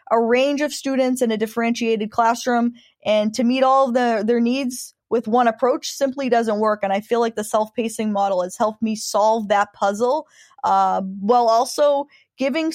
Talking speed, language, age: 175 wpm, English, 10-29